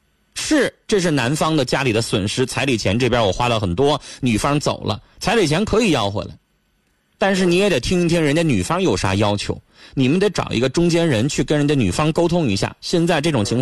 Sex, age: male, 30-49